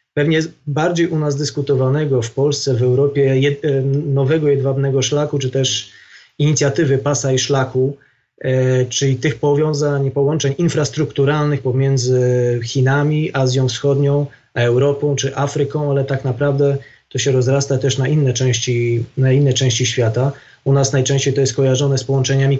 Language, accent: Polish, native